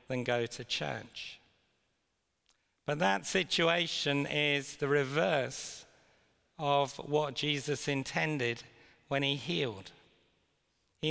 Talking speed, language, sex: 95 wpm, English, male